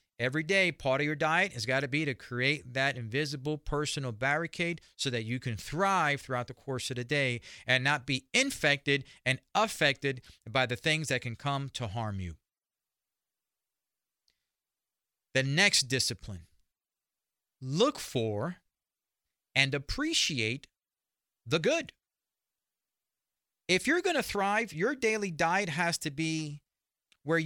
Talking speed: 140 wpm